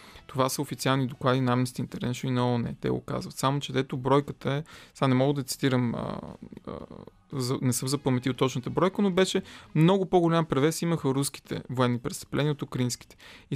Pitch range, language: 125-150 Hz, Bulgarian